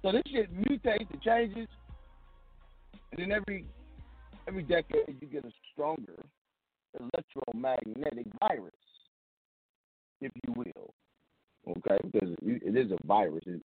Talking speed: 120 wpm